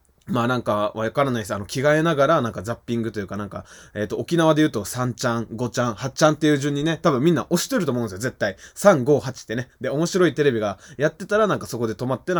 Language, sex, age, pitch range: Japanese, male, 20-39, 110-175 Hz